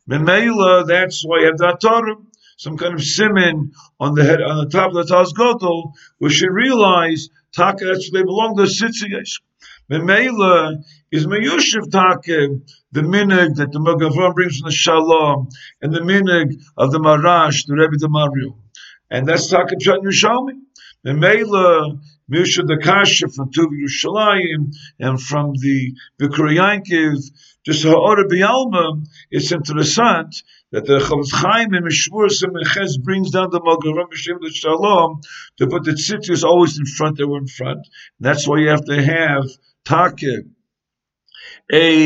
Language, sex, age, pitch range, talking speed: English, male, 50-69, 150-185 Hz, 145 wpm